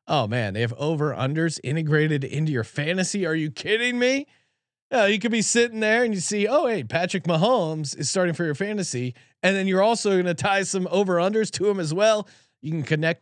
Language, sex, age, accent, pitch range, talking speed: English, male, 30-49, American, 135-185 Hz, 220 wpm